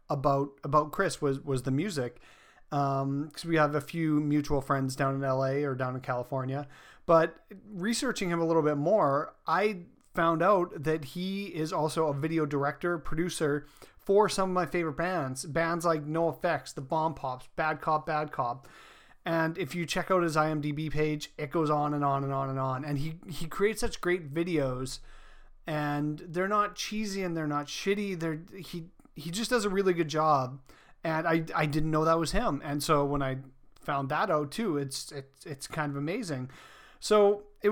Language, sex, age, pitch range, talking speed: English, male, 30-49, 145-175 Hz, 195 wpm